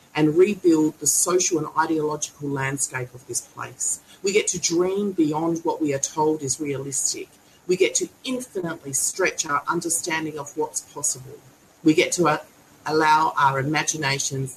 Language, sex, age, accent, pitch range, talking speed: English, female, 40-59, Australian, 140-170 Hz, 150 wpm